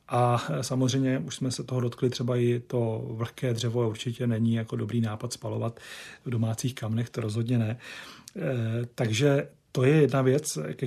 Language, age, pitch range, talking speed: Czech, 40-59, 115-130 Hz, 165 wpm